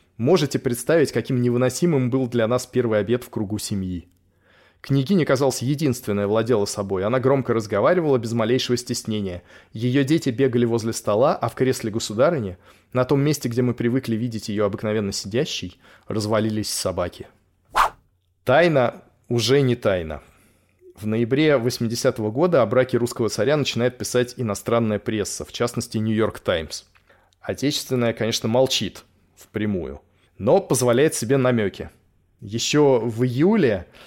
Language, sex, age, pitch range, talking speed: Russian, male, 20-39, 110-135 Hz, 130 wpm